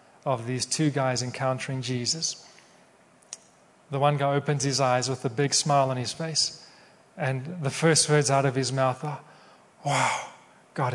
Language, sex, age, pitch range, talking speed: English, male, 30-49, 140-170 Hz, 165 wpm